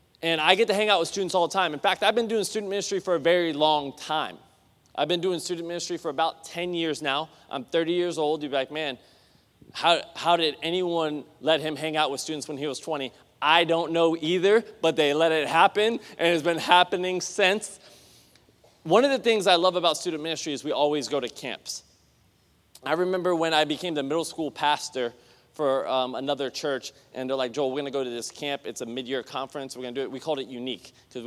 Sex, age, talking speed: male, 20-39, 235 wpm